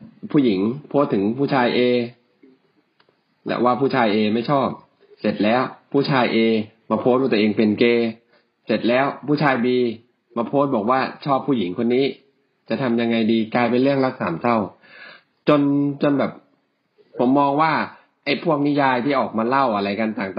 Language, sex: Thai, male